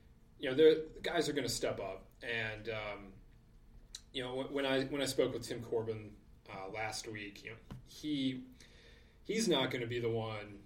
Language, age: English, 30-49